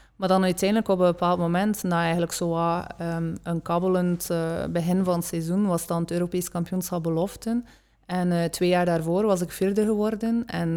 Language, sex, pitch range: English, female, 170-185 Hz